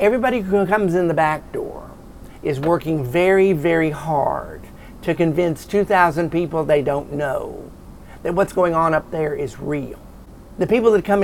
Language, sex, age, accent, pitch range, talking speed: English, male, 50-69, American, 140-180 Hz, 165 wpm